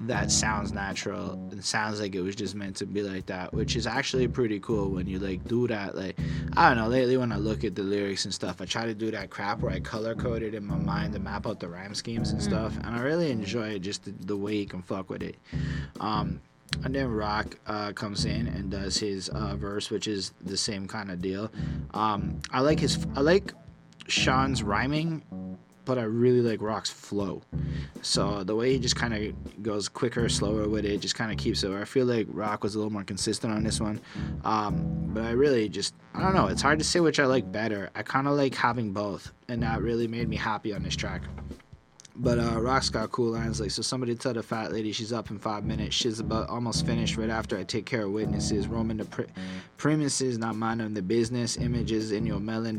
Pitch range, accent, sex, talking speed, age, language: 100-115 Hz, American, male, 235 wpm, 20-39, English